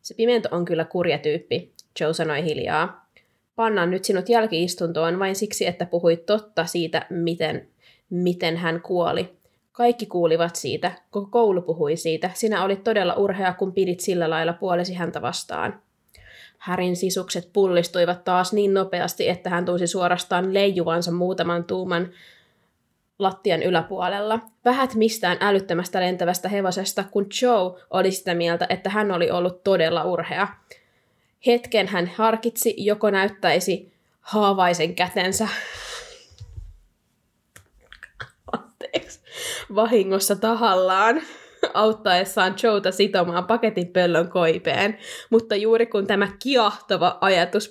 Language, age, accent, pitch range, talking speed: Finnish, 20-39, native, 175-215 Hz, 120 wpm